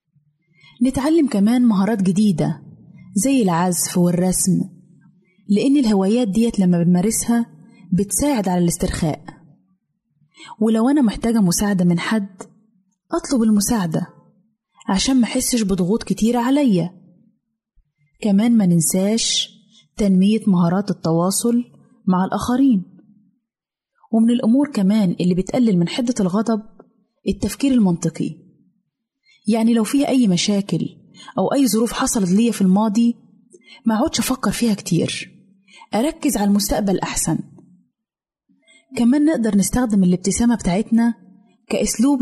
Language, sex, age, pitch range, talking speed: Arabic, female, 20-39, 190-235 Hz, 105 wpm